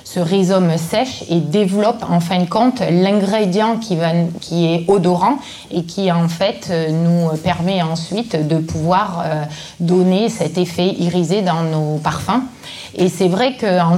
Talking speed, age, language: 150 wpm, 20-39, French